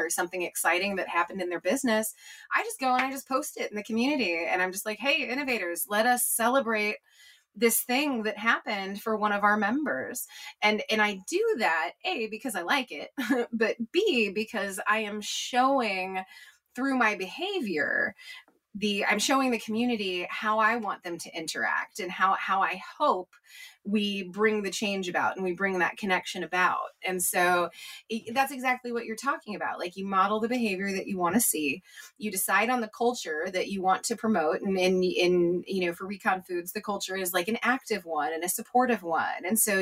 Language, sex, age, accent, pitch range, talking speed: English, female, 20-39, American, 185-245 Hz, 200 wpm